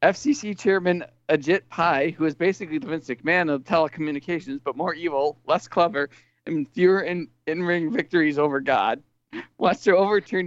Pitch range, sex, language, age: 145-185 Hz, male, English, 40-59